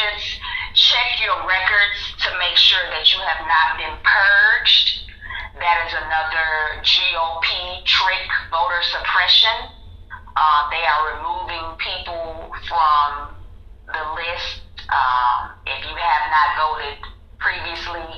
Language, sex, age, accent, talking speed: English, female, 30-49, American, 110 wpm